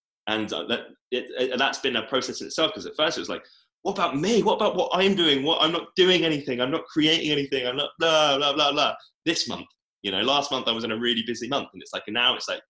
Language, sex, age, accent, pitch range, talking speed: English, male, 20-39, British, 95-140 Hz, 255 wpm